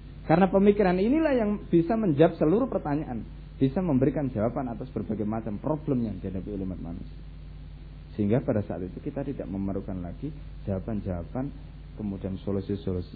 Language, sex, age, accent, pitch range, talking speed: Indonesian, male, 20-39, native, 85-130 Hz, 135 wpm